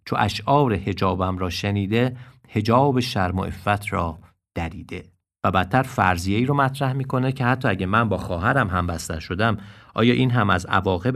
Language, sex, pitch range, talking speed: Persian, male, 95-120 Hz, 165 wpm